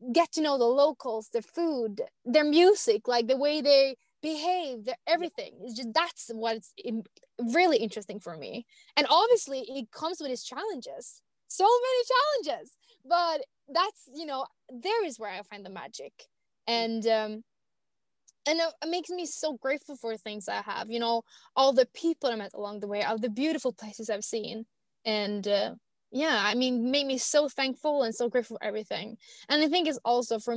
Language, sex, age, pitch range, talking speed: English, female, 20-39, 230-305 Hz, 180 wpm